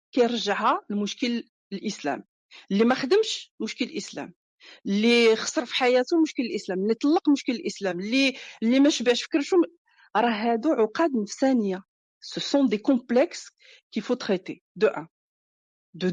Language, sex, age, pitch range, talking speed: Arabic, female, 50-69, 225-290 Hz, 120 wpm